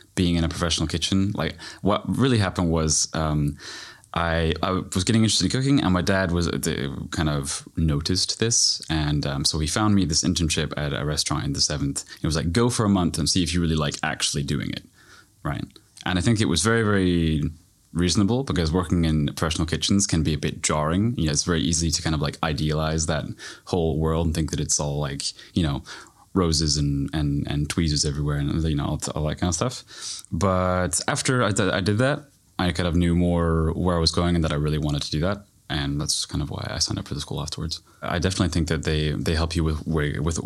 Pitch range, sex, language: 75-95 Hz, male, English